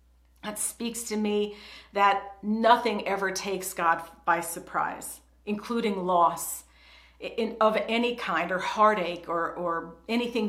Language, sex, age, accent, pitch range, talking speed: English, female, 50-69, American, 175-215 Hz, 125 wpm